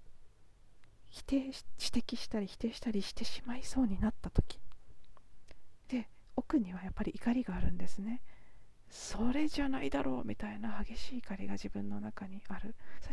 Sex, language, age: female, Japanese, 40-59